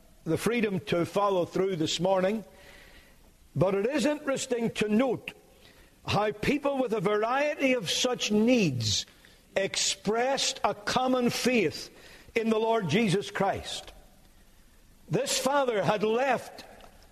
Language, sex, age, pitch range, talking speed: English, male, 60-79, 180-265 Hz, 120 wpm